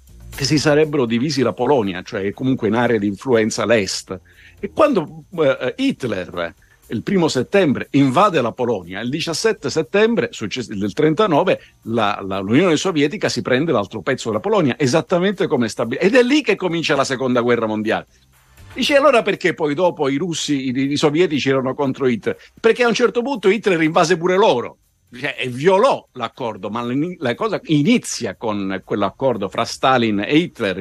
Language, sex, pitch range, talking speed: Italian, male, 110-165 Hz, 160 wpm